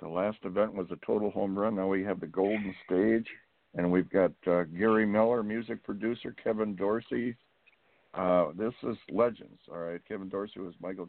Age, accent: 60-79, American